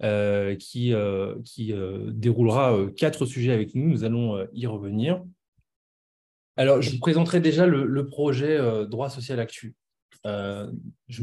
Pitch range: 110-140 Hz